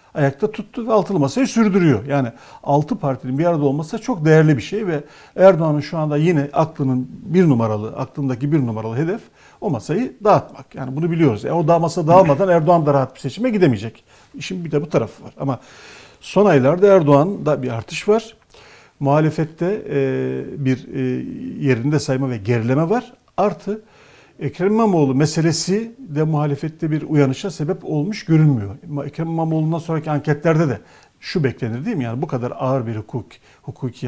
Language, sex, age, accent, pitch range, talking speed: Turkish, male, 50-69, native, 130-170 Hz, 160 wpm